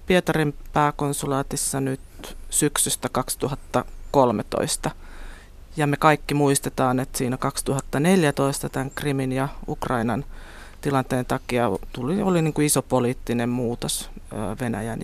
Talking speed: 105 wpm